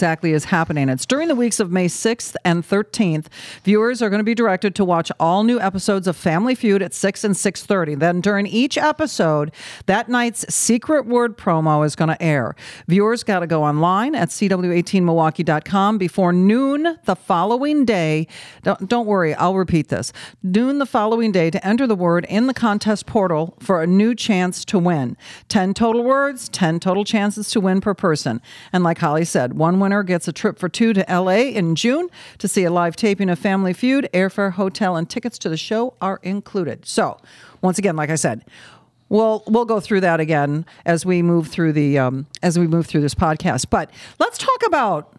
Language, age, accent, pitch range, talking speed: English, 50-69, American, 170-230 Hz, 200 wpm